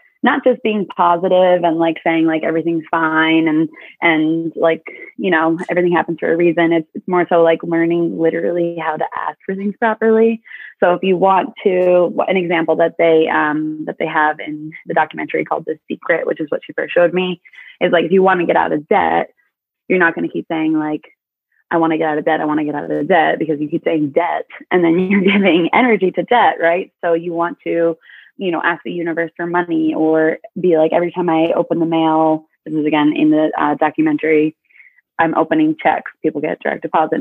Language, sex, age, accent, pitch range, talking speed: English, female, 20-39, American, 160-190 Hz, 215 wpm